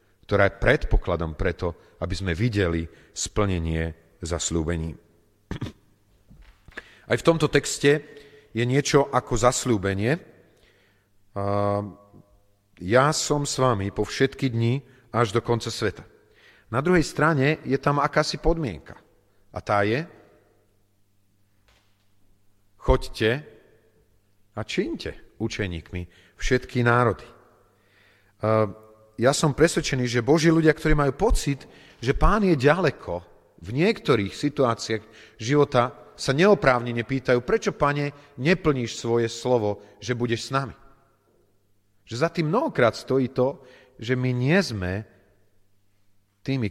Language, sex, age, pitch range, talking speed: Slovak, male, 40-59, 100-135 Hz, 110 wpm